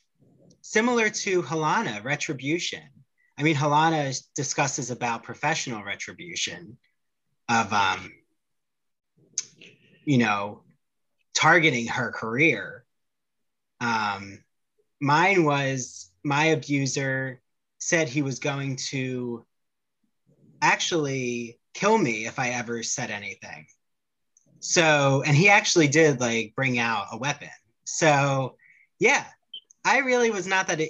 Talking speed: 105 wpm